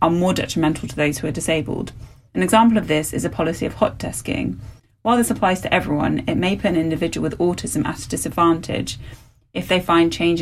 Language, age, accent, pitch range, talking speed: English, 20-39, British, 135-175 Hz, 205 wpm